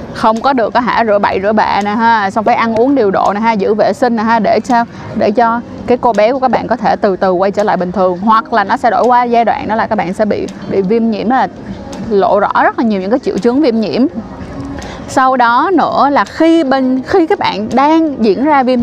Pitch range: 205-260 Hz